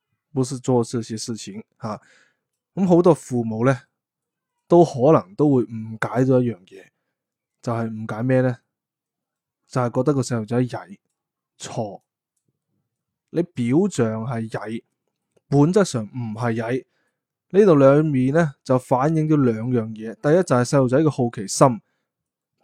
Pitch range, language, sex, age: 120-165 Hz, Chinese, male, 20-39